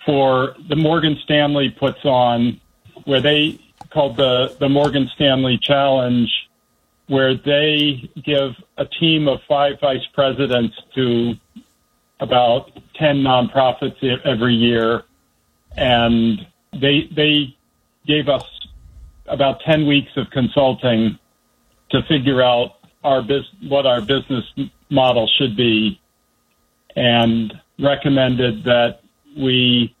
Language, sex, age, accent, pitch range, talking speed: English, male, 50-69, American, 120-140 Hz, 110 wpm